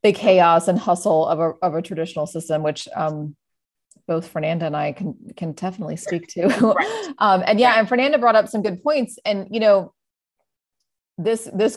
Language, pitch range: English, 175-210 Hz